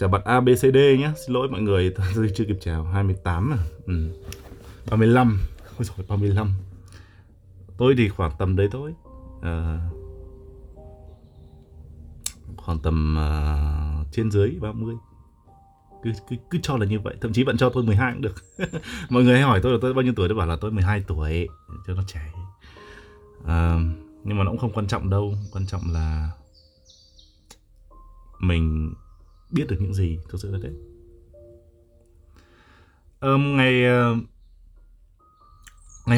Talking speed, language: 155 wpm, Vietnamese